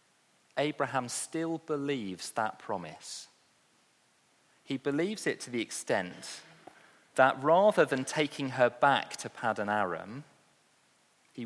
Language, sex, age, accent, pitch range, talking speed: English, male, 40-59, British, 130-180 Hz, 110 wpm